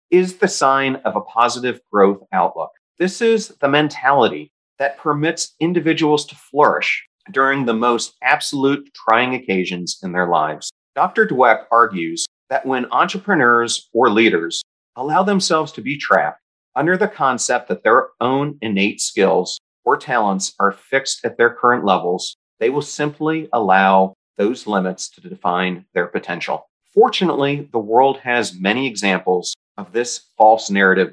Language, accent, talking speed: English, American, 145 wpm